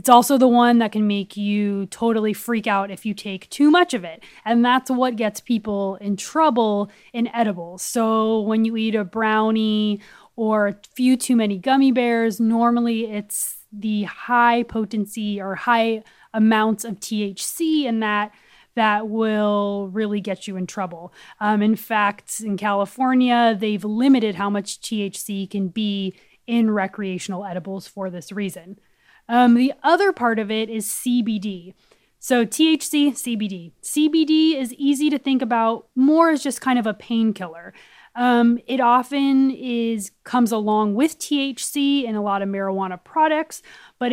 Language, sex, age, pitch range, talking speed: English, female, 20-39, 205-250 Hz, 160 wpm